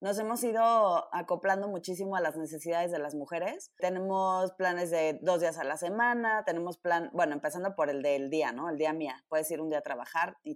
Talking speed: 215 wpm